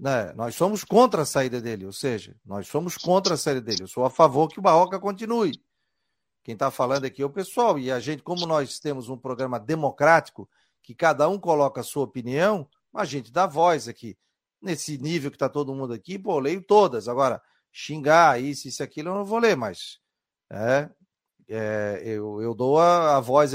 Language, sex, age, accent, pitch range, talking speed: Portuguese, male, 40-59, Brazilian, 130-175 Hz, 200 wpm